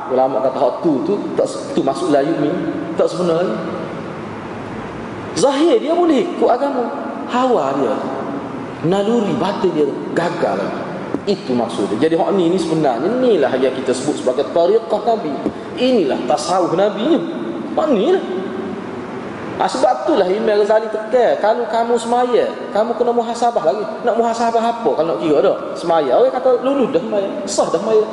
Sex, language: male, Malay